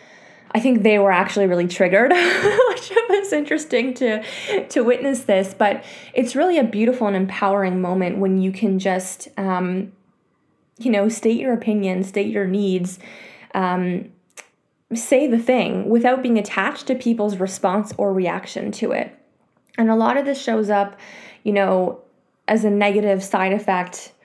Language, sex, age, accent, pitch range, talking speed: English, female, 20-39, American, 195-240 Hz, 155 wpm